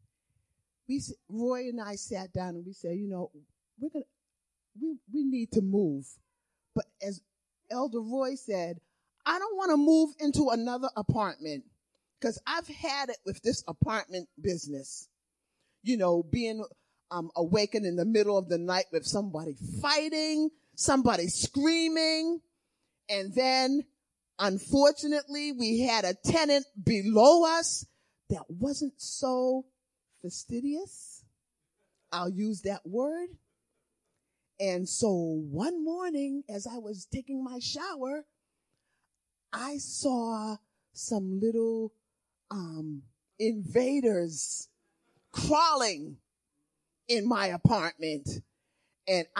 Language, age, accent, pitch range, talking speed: English, 40-59, American, 180-275 Hz, 115 wpm